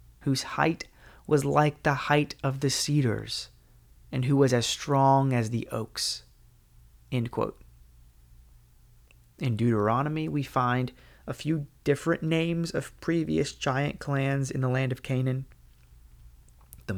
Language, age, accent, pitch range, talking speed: English, 30-49, American, 115-150 Hz, 130 wpm